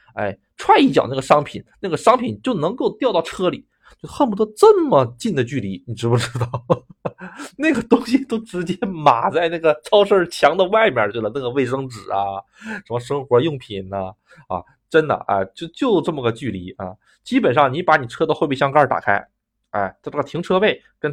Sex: male